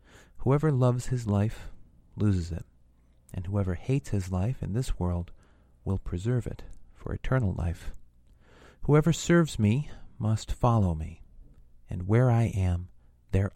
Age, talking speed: 40-59, 135 wpm